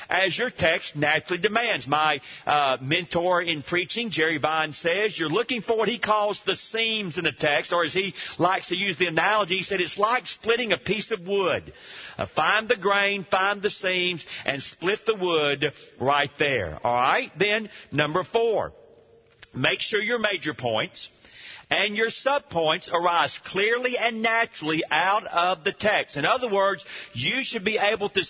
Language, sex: English, male